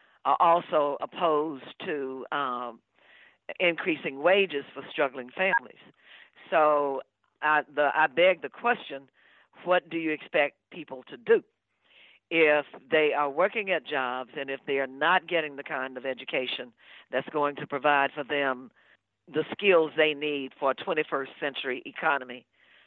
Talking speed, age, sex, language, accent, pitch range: 140 wpm, 50-69, female, English, American, 140-170 Hz